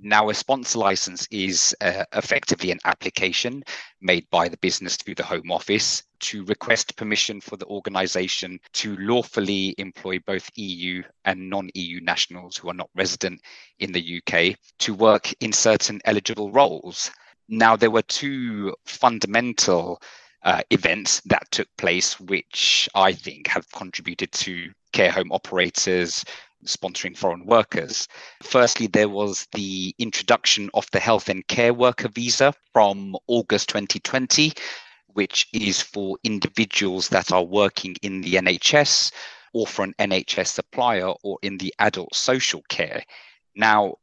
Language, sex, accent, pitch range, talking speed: English, male, British, 95-115 Hz, 140 wpm